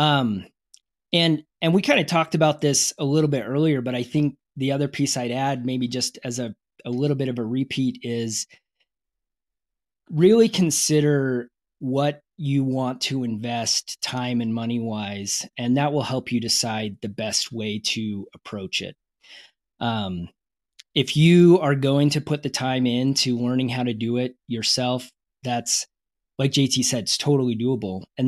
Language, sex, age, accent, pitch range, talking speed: English, male, 20-39, American, 120-145 Hz, 170 wpm